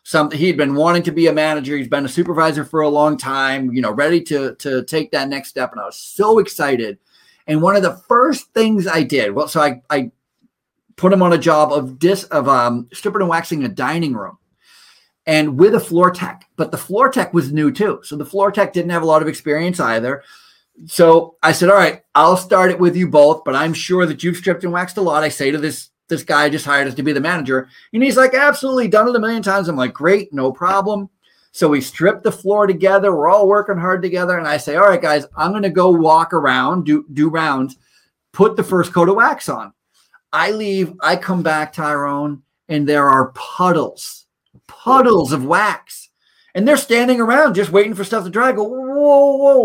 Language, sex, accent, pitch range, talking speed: English, male, American, 150-205 Hz, 225 wpm